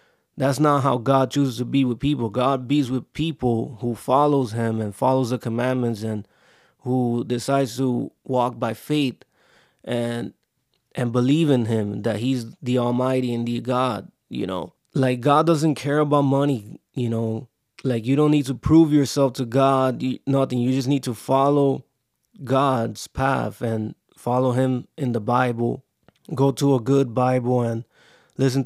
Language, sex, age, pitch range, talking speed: English, male, 20-39, 120-140 Hz, 165 wpm